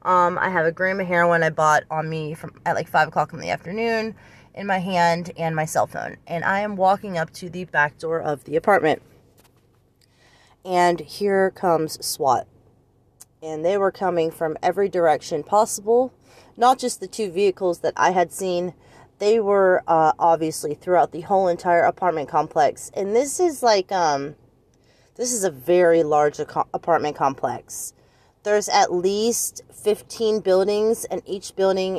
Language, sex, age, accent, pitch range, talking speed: English, female, 30-49, American, 160-220 Hz, 165 wpm